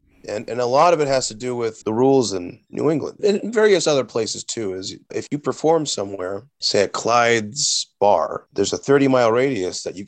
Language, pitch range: English, 100-125 Hz